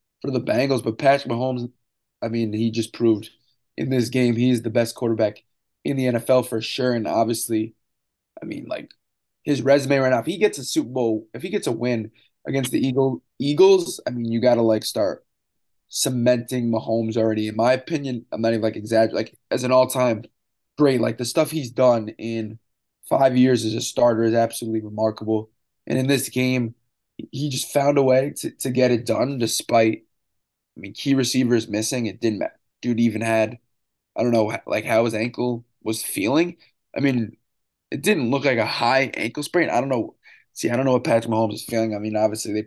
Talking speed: 205 wpm